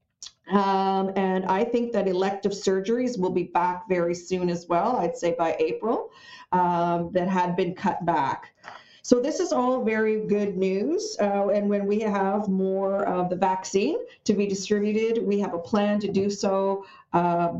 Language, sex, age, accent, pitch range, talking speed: English, female, 40-59, American, 175-205 Hz, 175 wpm